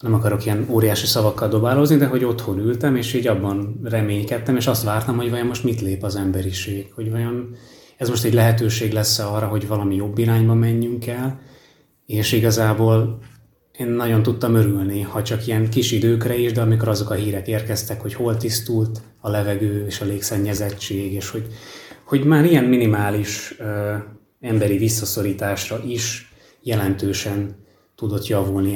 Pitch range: 100-115 Hz